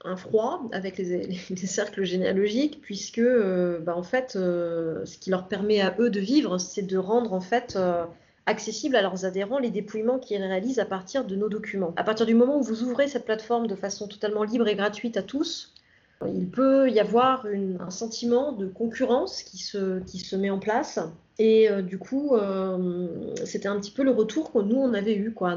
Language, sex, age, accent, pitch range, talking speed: French, female, 30-49, French, 185-230 Hz, 210 wpm